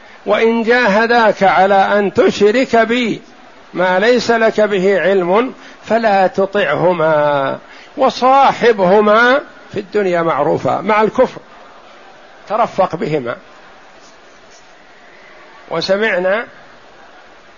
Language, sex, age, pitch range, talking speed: Arabic, male, 60-79, 170-205 Hz, 75 wpm